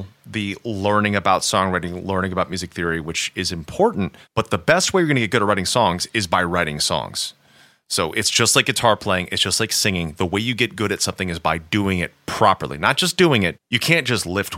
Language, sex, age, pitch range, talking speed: English, male, 30-49, 85-105 Hz, 235 wpm